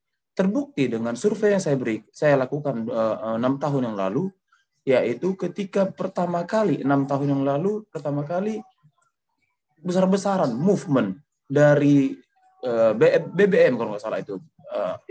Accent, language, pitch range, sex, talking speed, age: native, Indonesian, 140-215 Hz, male, 130 wpm, 20-39